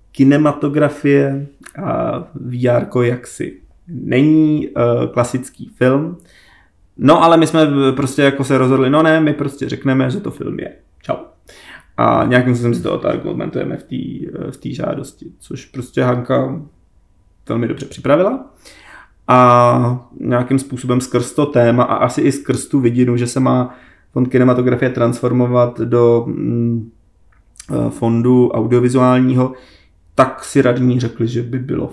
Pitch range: 120-145 Hz